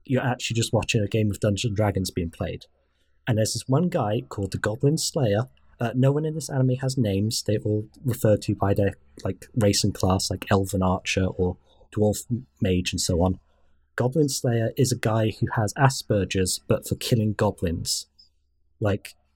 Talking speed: 185 wpm